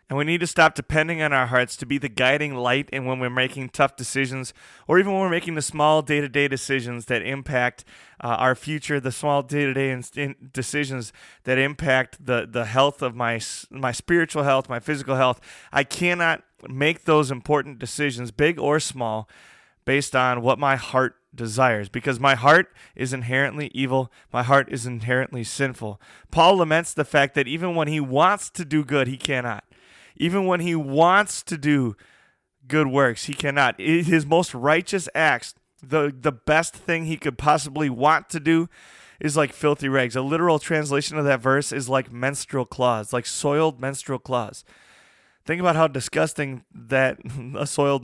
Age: 20-39